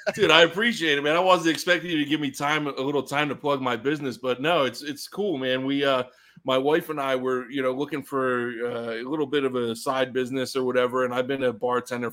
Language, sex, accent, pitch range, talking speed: English, male, American, 120-140 Hz, 255 wpm